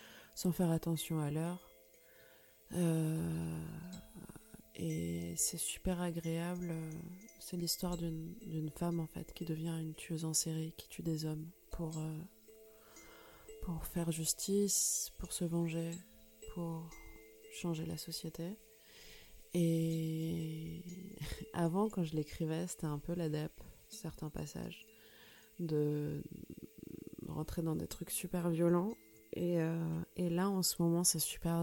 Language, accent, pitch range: French, French, 160-180 Hz